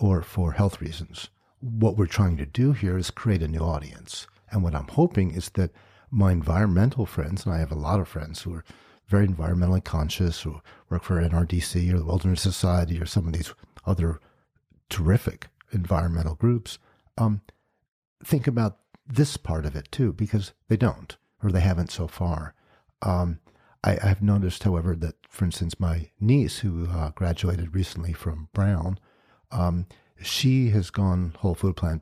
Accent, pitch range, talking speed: American, 85-105 Hz, 170 wpm